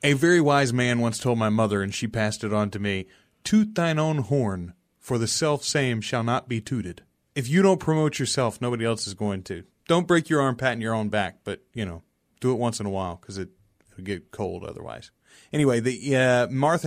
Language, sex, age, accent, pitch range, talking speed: English, male, 30-49, American, 115-155 Hz, 230 wpm